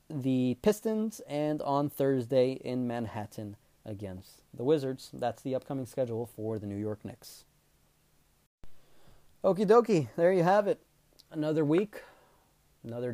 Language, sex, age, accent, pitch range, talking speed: English, male, 30-49, American, 110-155 Hz, 130 wpm